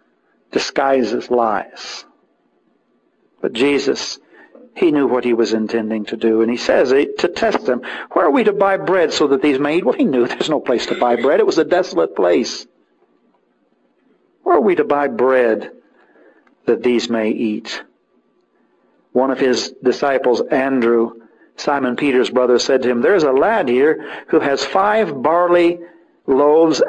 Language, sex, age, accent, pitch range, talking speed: English, male, 60-79, American, 120-165 Hz, 165 wpm